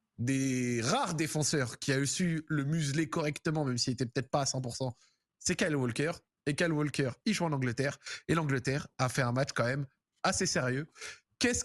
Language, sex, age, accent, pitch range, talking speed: French, male, 20-39, French, 135-180 Hz, 195 wpm